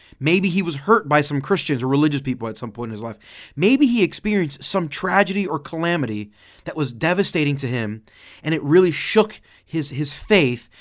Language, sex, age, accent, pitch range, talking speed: English, male, 30-49, American, 125-180 Hz, 195 wpm